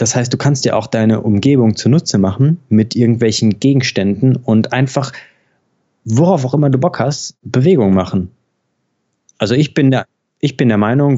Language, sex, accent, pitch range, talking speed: German, male, German, 100-125 Hz, 155 wpm